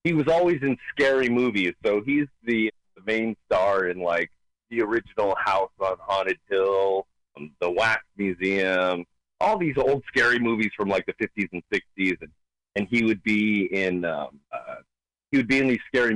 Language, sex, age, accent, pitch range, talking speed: English, male, 30-49, American, 95-135 Hz, 170 wpm